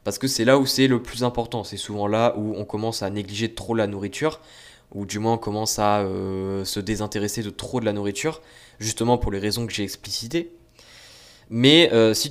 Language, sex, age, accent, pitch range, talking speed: French, male, 20-39, French, 105-125 Hz, 215 wpm